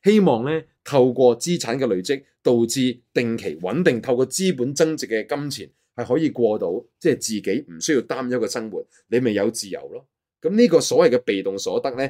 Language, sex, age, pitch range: Chinese, male, 20-39, 110-155 Hz